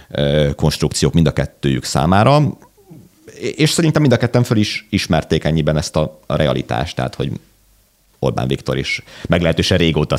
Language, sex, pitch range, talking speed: Hungarian, male, 70-80 Hz, 140 wpm